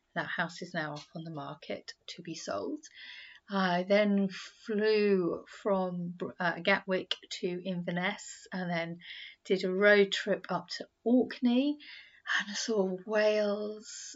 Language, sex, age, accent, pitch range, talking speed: English, female, 30-49, British, 175-205 Hz, 125 wpm